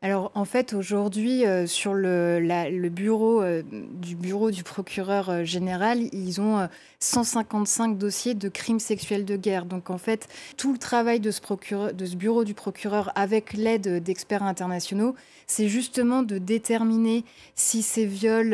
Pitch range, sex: 190-230 Hz, female